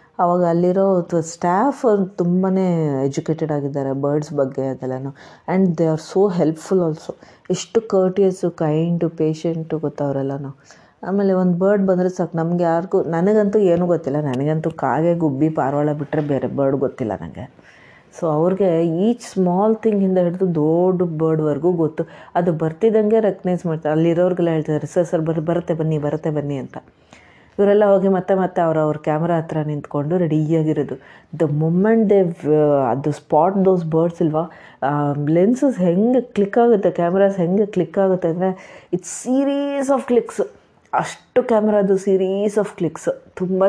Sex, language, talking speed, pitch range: female, Kannada, 135 wpm, 155-190 Hz